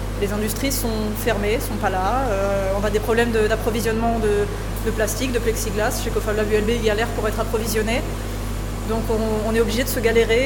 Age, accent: 20-39, French